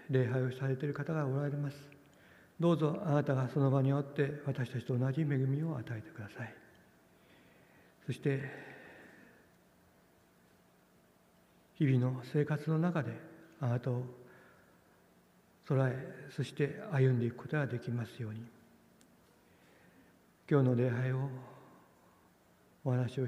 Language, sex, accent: Japanese, male, native